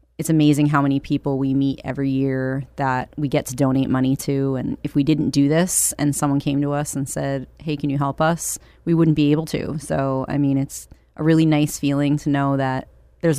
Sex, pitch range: female, 135-150 Hz